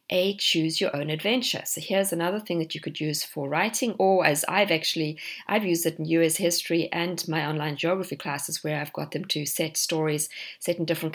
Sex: female